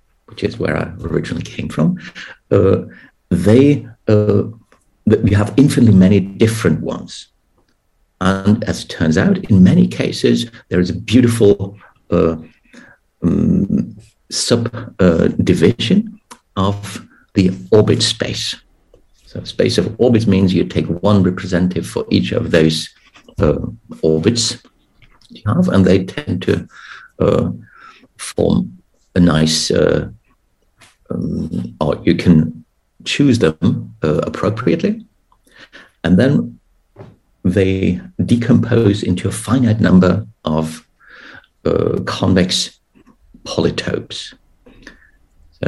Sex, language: male, English